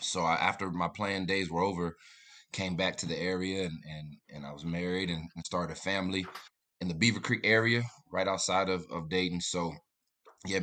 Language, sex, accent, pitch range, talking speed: English, male, American, 85-100 Hz, 200 wpm